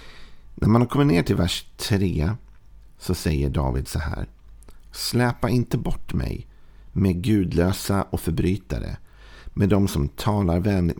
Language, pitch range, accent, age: Swedish, 85-105 Hz, native, 50-69